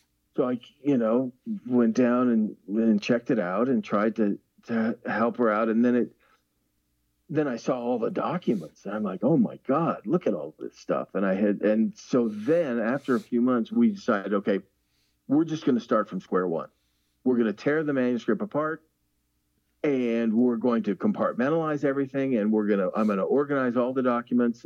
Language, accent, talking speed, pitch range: English, American, 200 wpm, 100-125 Hz